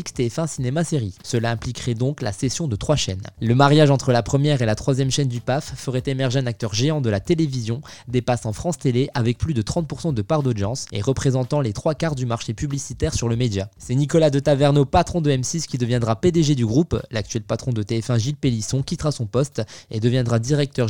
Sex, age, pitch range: male, 20-39, 120-160 Hz